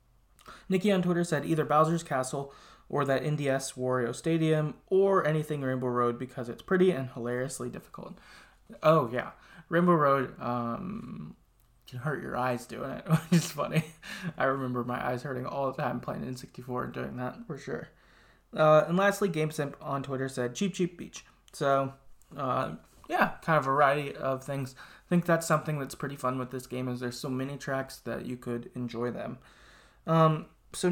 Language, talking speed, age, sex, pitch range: English, 180 wpm, 20-39, male, 125-155 Hz